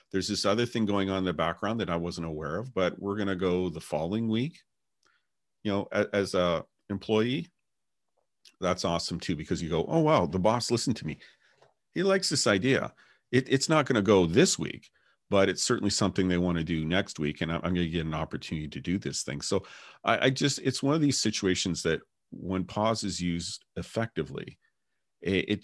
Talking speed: 210 wpm